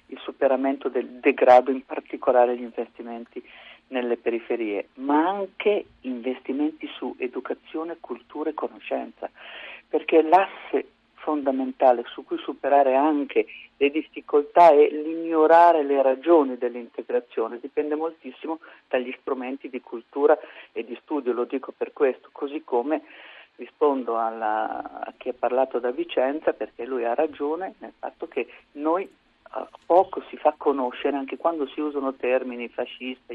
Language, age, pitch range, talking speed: Italian, 50-69, 125-170 Hz, 130 wpm